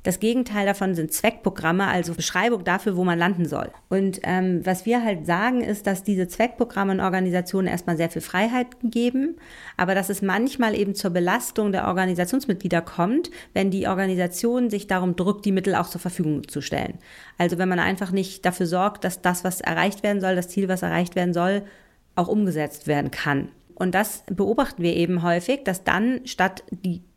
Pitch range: 175-205 Hz